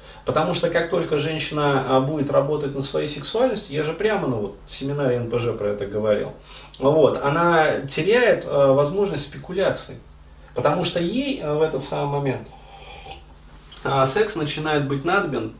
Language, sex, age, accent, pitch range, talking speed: Russian, male, 30-49, native, 125-170 Hz, 135 wpm